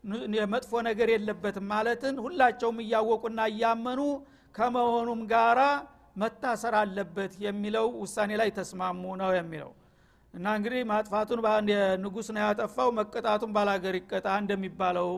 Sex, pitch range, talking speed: male, 200-240 Hz, 110 wpm